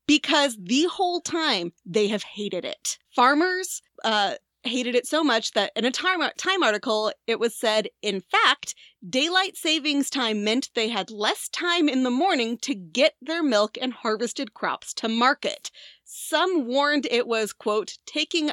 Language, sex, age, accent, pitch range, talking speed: English, female, 30-49, American, 210-285 Hz, 160 wpm